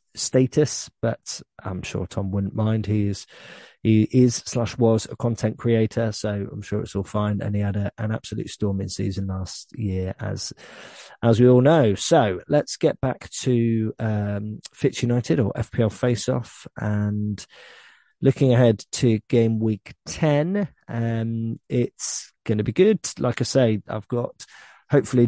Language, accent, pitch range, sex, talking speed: English, British, 105-120 Hz, male, 160 wpm